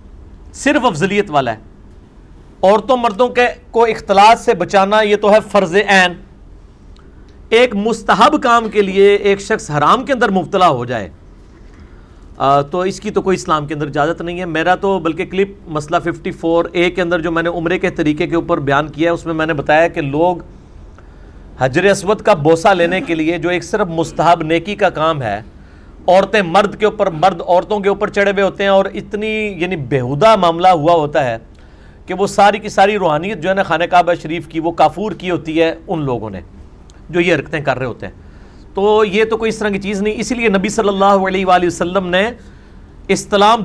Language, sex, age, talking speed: Urdu, male, 50-69, 205 wpm